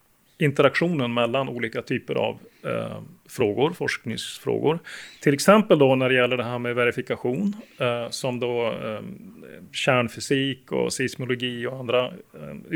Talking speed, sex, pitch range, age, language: 130 wpm, male, 125-160 Hz, 30-49, Swedish